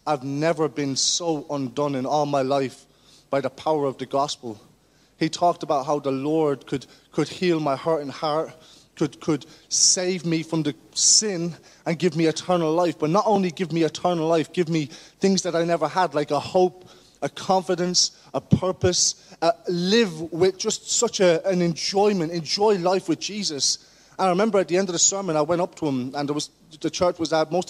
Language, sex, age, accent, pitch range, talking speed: English, male, 30-49, British, 135-170 Hz, 200 wpm